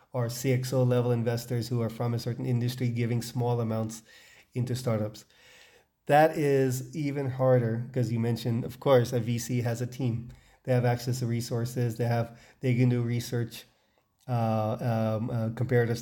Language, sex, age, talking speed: English, male, 30-49, 165 wpm